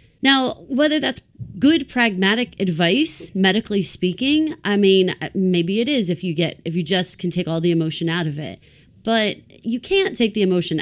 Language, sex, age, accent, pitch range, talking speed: English, female, 30-49, American, 170-225 Hz, 185 wpm